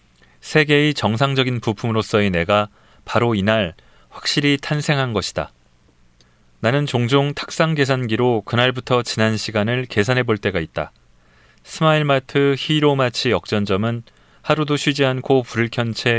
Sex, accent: male, native